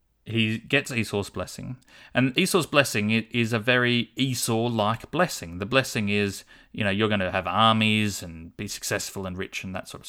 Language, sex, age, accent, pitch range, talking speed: English, male, 30-49, Australian, 105-130 Hz, 185 wpm